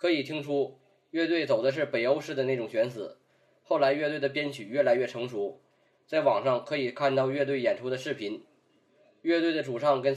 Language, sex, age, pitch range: Chinese, male, 20-39, 130-150 Hz